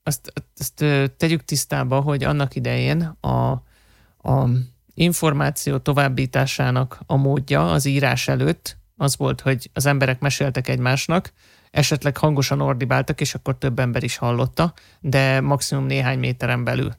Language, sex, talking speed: Hungarian, male, 125 wpm